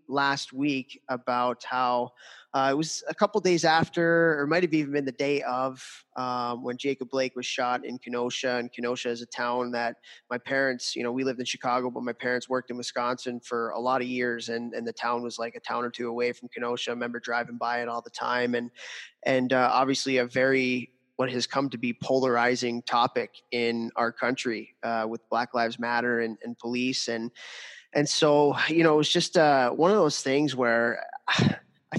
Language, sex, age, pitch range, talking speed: English, male, 20-39, 120-140 Hz, 210 wpm